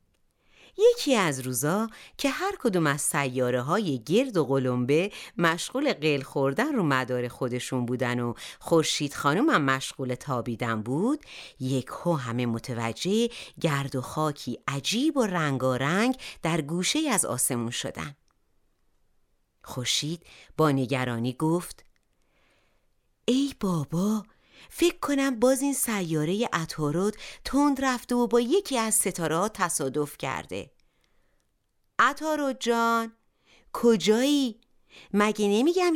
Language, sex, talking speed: Persian, female, 110 wpm